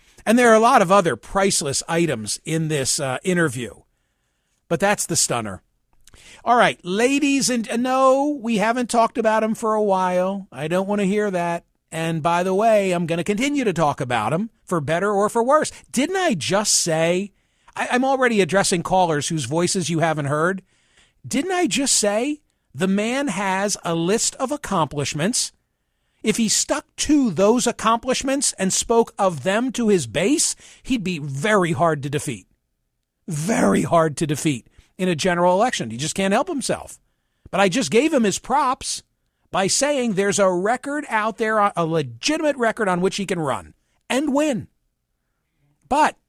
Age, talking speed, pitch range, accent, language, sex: 50-69, 175 wpm, 170-235 Hz, American, English, male